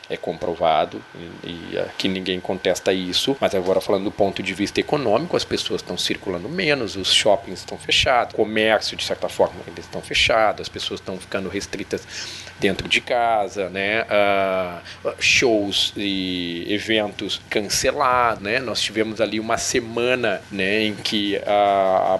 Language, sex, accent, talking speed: Portuguese, male, Brazilian, 155 wpm